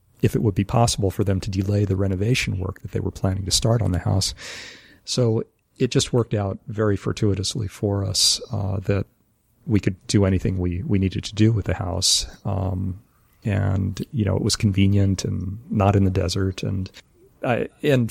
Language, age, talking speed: English, 40-59, 195 wpm